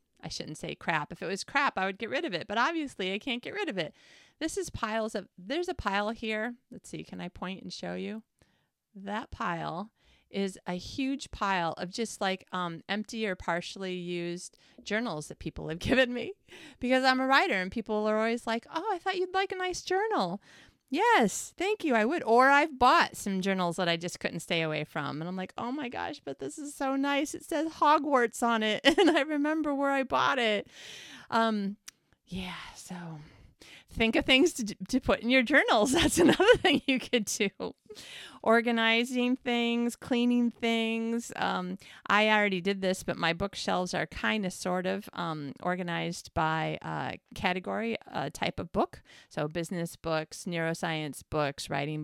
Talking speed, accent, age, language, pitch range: 190 wpm, American, 30-49, English, 175-265 Hz